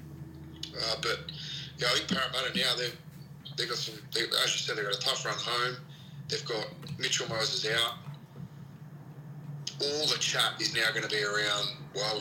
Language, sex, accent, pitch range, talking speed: English, male, Australian, 130-150 Hz, 175 wpm